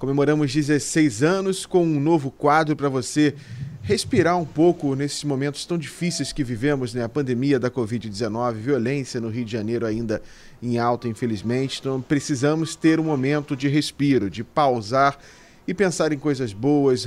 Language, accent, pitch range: Portuguese, Brazilian, 135-175 Hz